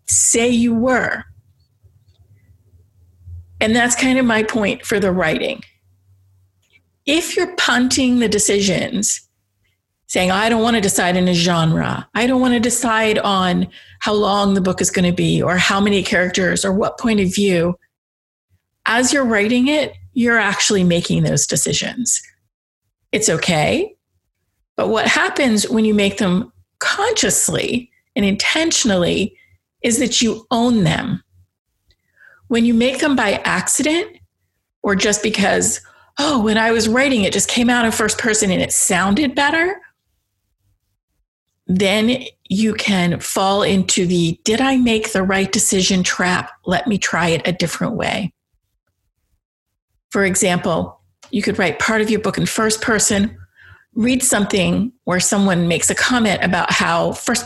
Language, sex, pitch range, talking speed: English, female, 160-235 Hz, 150 wpm